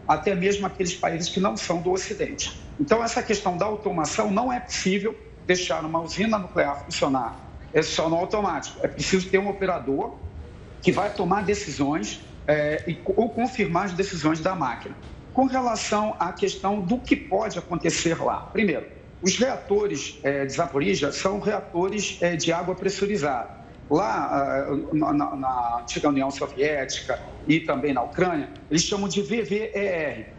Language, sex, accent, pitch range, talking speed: Portuguese, male, Brazilian, 165-210 Hz, 155 wpm